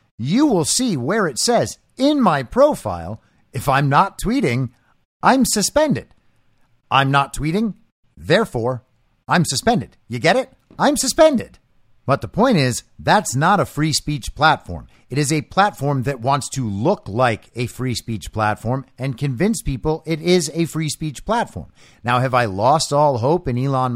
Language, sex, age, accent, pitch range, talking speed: English, male, 50-69, American, 120-185 Hz, 165 wpm